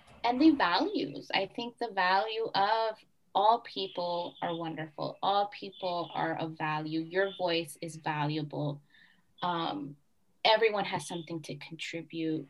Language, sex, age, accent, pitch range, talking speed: English, female, 20-39, American, 160-200 Hz, 130 wpm